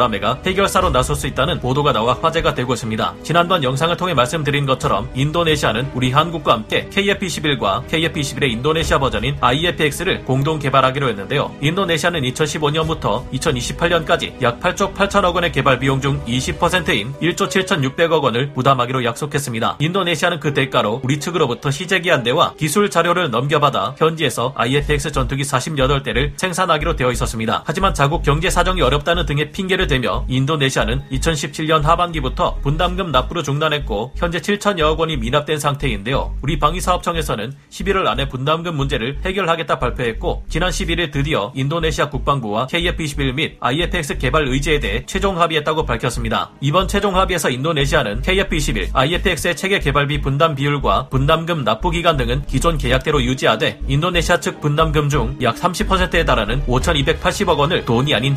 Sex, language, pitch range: male, Korean, 130-175 Hz